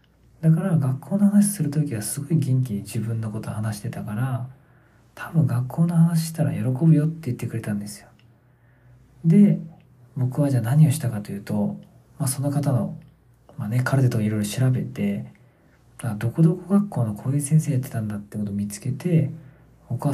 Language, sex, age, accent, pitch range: Japanese, male, 40-59, native, 115-145 Hz